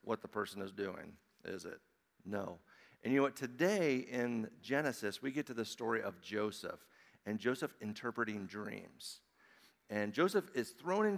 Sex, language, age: male, English, 50-69